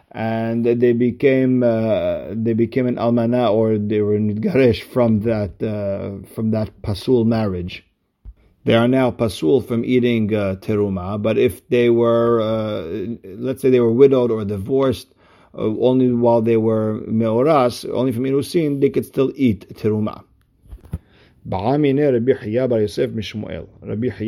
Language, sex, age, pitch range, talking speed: English, male, 50-69, 105-125 Hz, 140 wpm